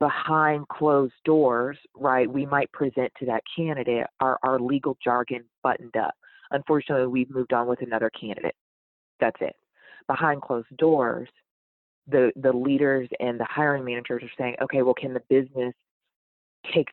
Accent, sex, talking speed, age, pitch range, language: American, female, 150 wpm, 30-49, 120-140 Hz, English